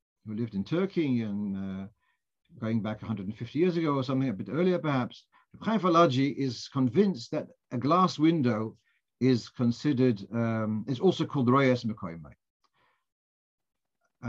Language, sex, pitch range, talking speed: English, male, 120-150 Hz, 140 wpm